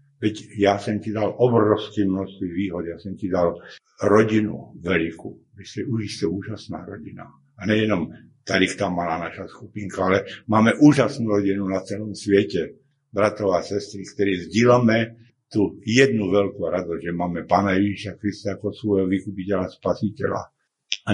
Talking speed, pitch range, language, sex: 150 wpm, 95-110 Hz, Slovak, male